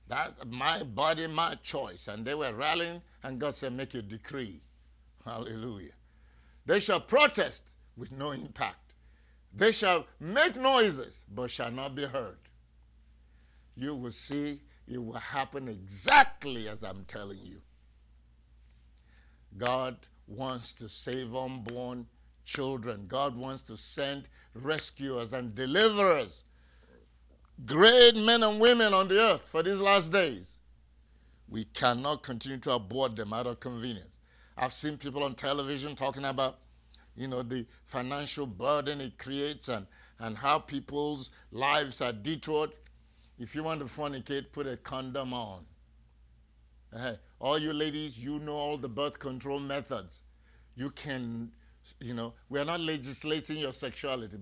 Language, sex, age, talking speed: English, male, 50-69, 140 wpm